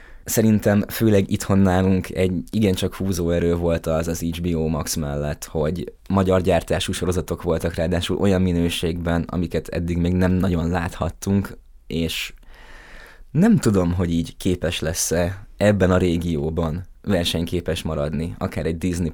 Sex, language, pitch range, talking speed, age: male, Hungarian, 85-105 Hz, 135 wpm, 20-39